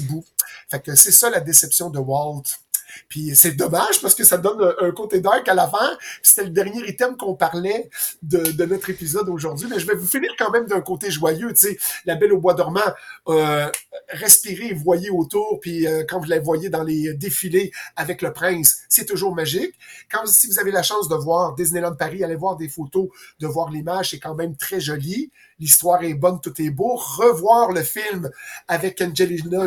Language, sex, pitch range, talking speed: French, male, 160-195 Hz, 205 wpm